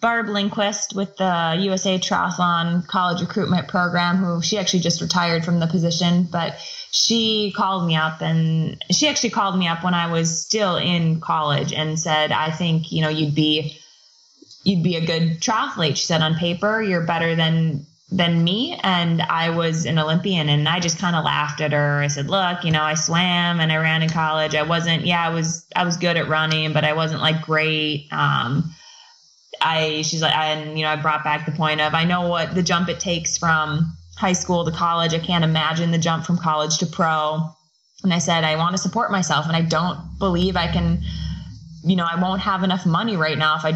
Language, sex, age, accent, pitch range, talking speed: English, female, 20-39, American, 155-180 Hz, 215 wpm